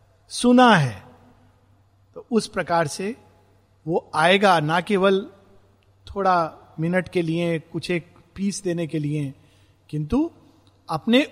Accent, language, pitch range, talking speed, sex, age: native, Hindi, 155-245 Hz, 115 wpm, male, 50-69